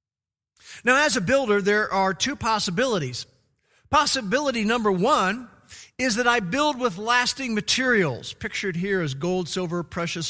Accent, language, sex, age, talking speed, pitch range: American, English, male, 50-69, 140 wpm, 165-220 Hz